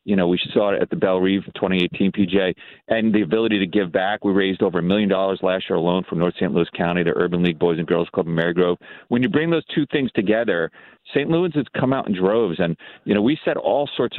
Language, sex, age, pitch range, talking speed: English, male, 40-59, 90-115 Hz, 260 wpm